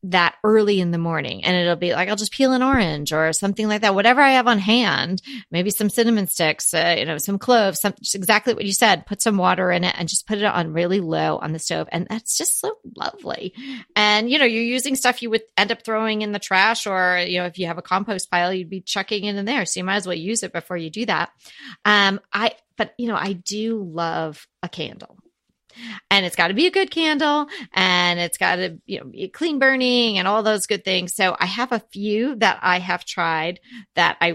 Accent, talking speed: American, 240 wpm